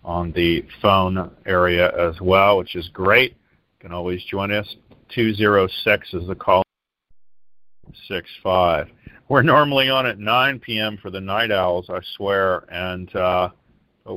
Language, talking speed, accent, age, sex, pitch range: English, 145 wpm, American, 40-59, male, 90-110 Hz